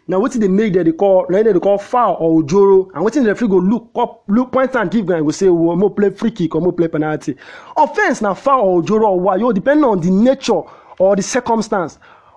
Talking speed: 245 wpm